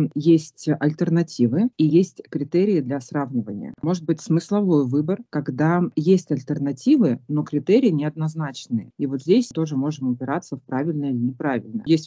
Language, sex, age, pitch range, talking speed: Russian, female, 30-49, 125-150 Hz, 140 wpm